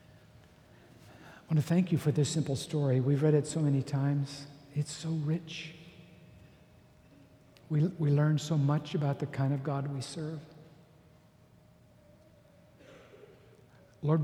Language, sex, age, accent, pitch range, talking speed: English, male, 60-79, American, 130-155 Hz, 130 wpm